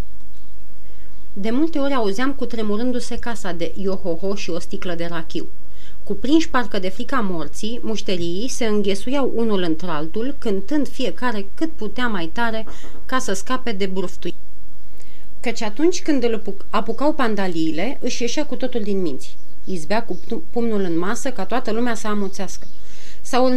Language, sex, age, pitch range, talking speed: Romanian, female, 30-49, 185-250 Hz, 150 wpm